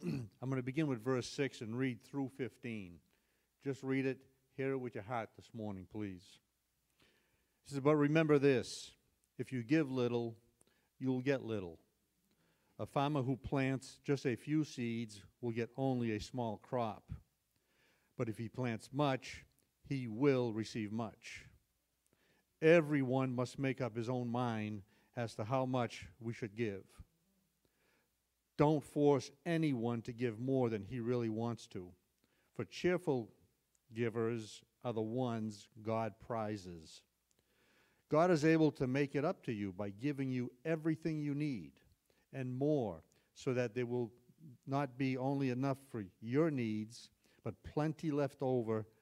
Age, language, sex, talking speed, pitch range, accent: 50-69, English, male, 150 wpm, 110-140 Hz, American